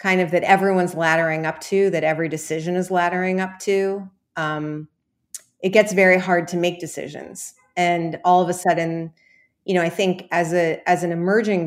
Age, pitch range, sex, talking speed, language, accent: 30-49, 165-195 Hz, female, 185 wpm, English, American